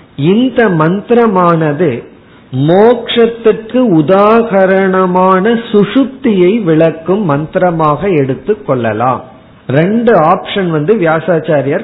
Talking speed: 55 wpm